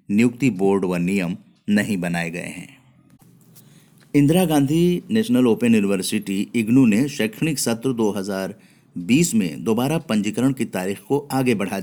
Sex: male